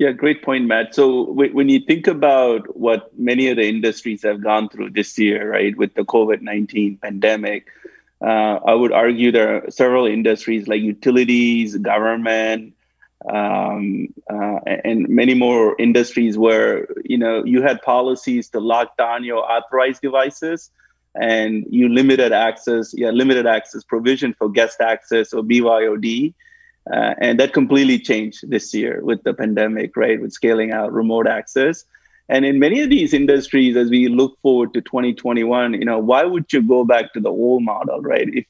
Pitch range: 110-130 Hz